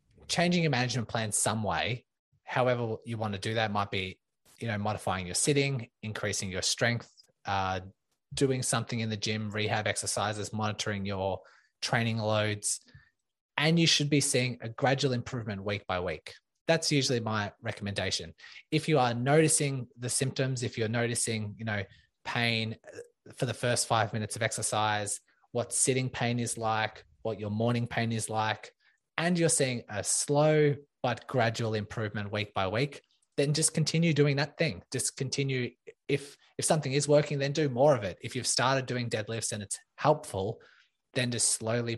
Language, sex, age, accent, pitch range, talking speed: English, male, 20-39, Australian, 105-130 Hz, 170 wpm